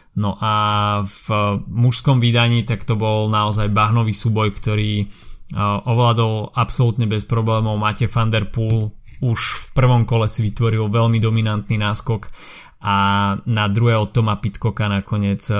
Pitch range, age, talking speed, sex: 105-115 Hz, 20-39, 125 wpm, male